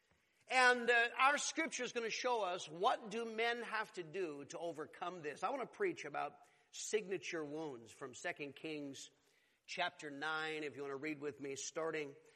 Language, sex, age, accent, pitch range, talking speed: English, male, 40-59, American, 170-260 Hz, 185 wpm